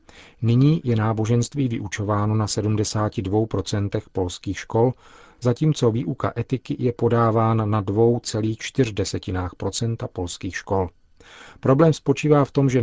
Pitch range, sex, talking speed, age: 100-120 Hz, male, 105 wpm, 40-59